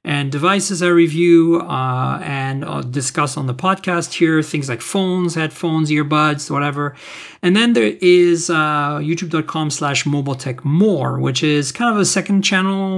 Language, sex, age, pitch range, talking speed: English, male, 40-59, 145-185 Hz, 155 wpm